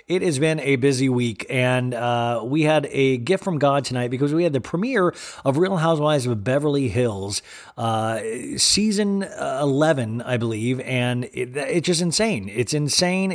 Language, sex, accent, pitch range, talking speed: English, male, American, 115-150 Hz, 165 wpm